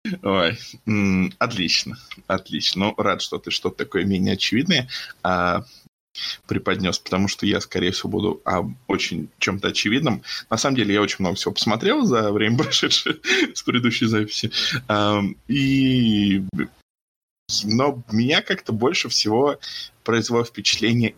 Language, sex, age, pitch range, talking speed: Russian, male, 20-39, 100-125 Hz, 130 wpm